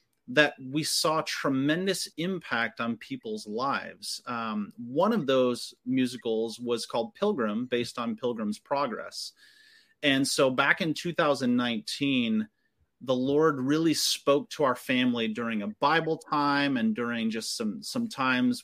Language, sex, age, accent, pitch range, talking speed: English, male, 30-49, American, 120-160 Hz, 135 wpm